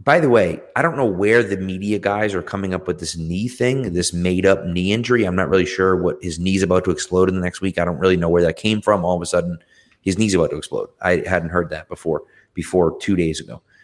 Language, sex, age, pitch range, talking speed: English, male, 30-49, 85-105 Hz, 265 wpm